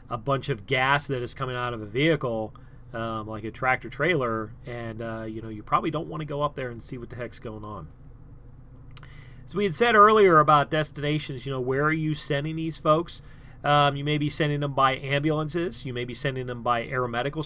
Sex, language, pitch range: male, English, 125-150 Hz